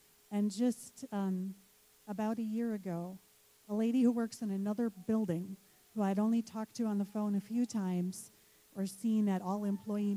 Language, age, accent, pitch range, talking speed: English, 40-59, American, 195-235 Hz, 175 wpm